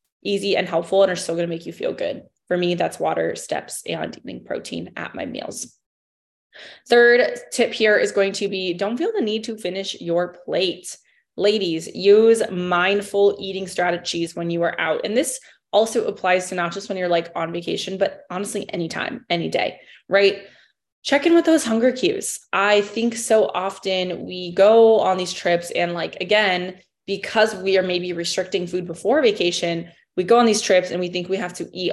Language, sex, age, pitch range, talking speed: English, female, 20-39, 180-245 Hz, 195 wpm